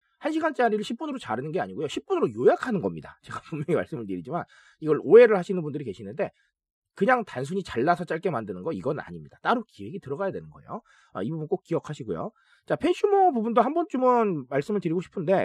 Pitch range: 175-255 Hz